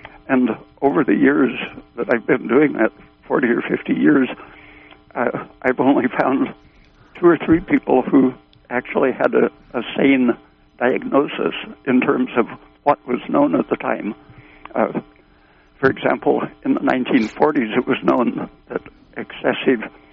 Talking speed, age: 145 wpm, 60-79